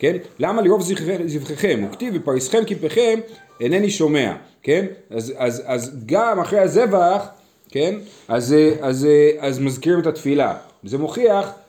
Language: Hebrew